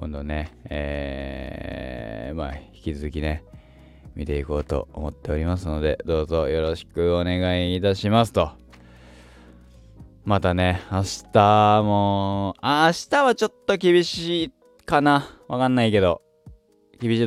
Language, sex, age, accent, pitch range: Japanese, male, 20-39, native, 75-110 Hz